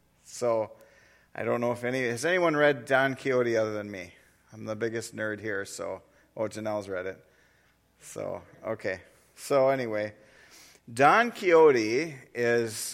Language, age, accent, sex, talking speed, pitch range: English, 40-59, American, male, 145 wpm, 110-140 Hz